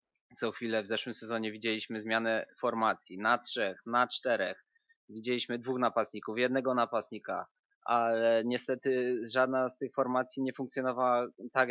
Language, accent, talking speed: Polish, native, 135 wpm